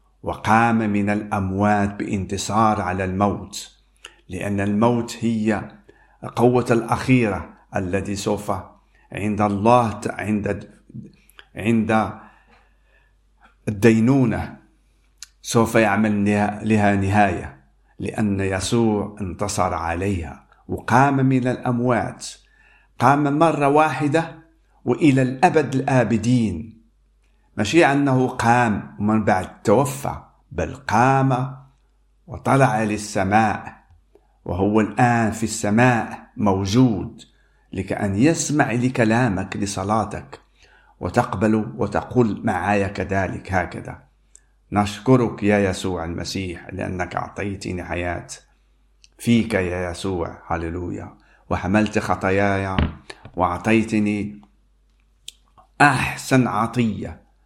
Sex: male